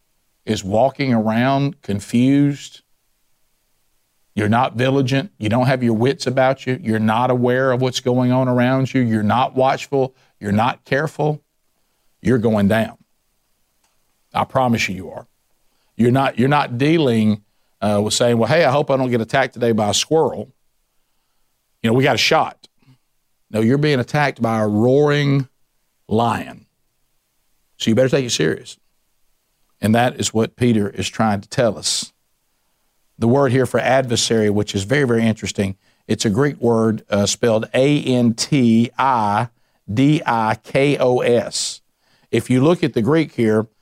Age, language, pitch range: 50-69, English, 110-135 Hz